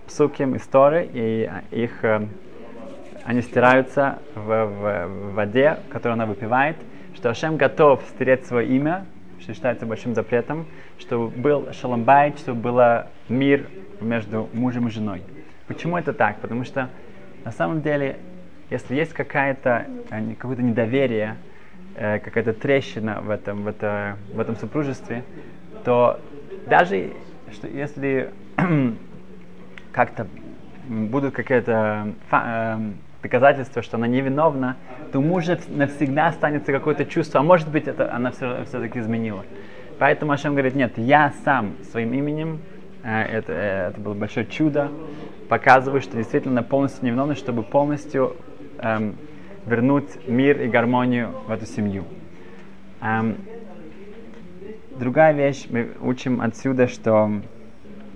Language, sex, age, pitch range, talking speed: Russian, male, 20-39, 110-145 Hz, 120 wpm